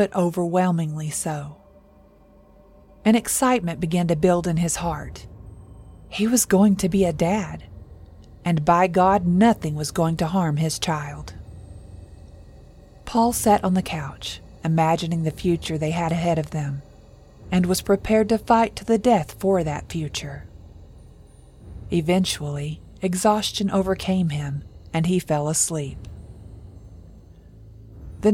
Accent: American